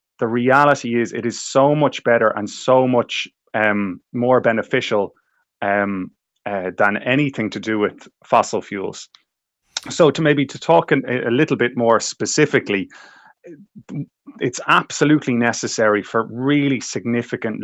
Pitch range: 105-130 Hz